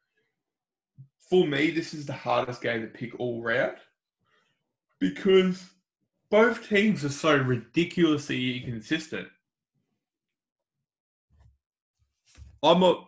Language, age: English, 20-39